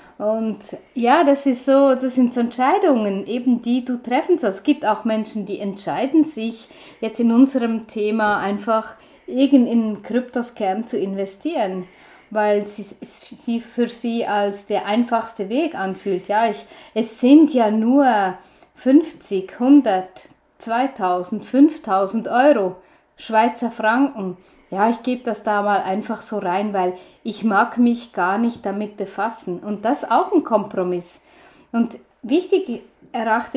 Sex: female